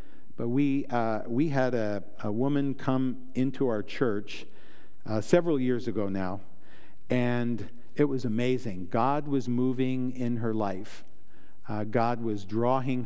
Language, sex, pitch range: English, male, 110-135 Hz